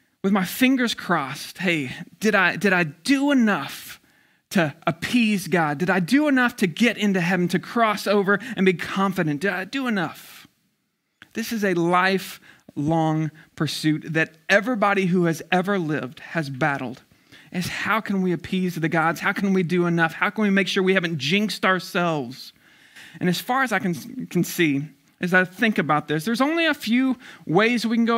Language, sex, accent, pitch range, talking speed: English, male, American, 170-220 Hz, 185 wpm